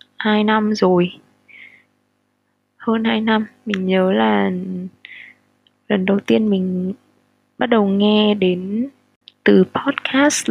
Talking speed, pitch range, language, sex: 110 wpm, 185-225 Hz, Vietnamese, female